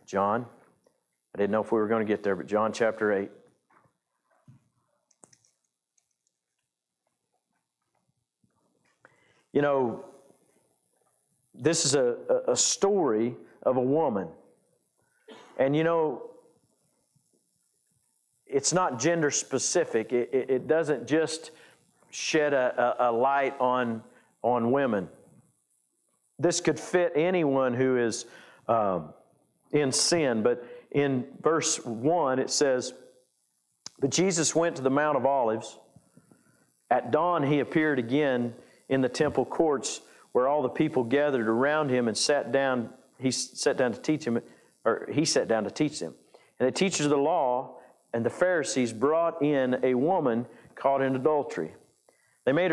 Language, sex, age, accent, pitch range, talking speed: English, male, 50-69, American, 125-160 Hz, 135 wpm